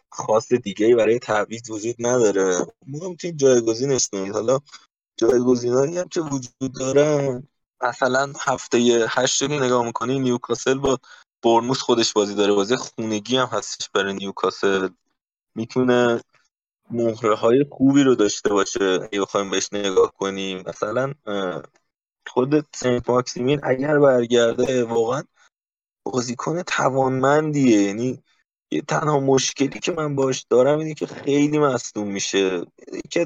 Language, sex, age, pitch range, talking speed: Persian, male, 20-39, 115-135 Hz, 120 wpm